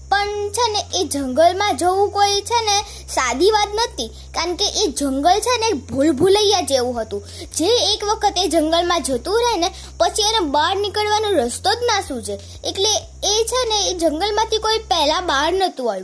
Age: 20-39